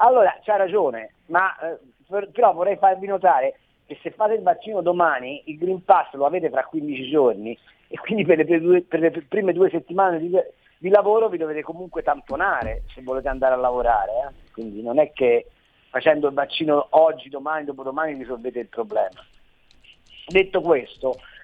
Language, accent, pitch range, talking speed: Italian, native, 145-220 Hz, 175 wpm